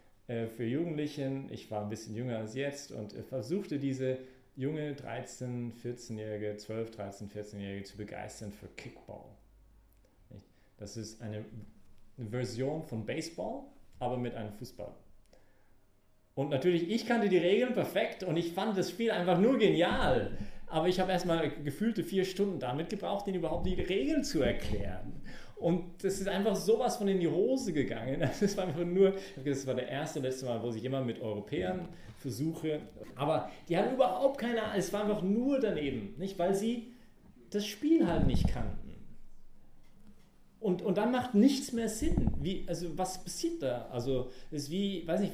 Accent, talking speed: German, 160 wpm